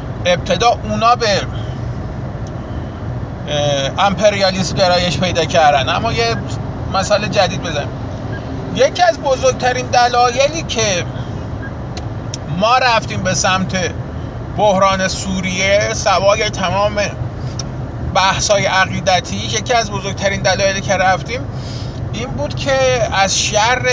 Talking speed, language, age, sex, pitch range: 95 wpm, Persian, 30-49, male, 115-160 Hz